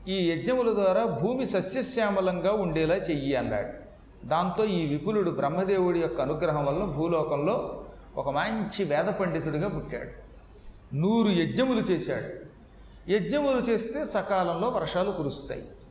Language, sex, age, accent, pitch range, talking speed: Telugu, male, 40-59, native, 165-215 Hz, 110 wpm